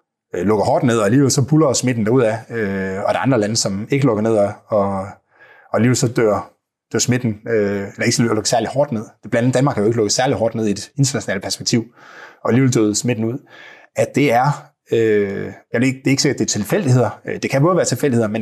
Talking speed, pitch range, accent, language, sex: 225 wpm, 105-140 Hz, native, Danish, male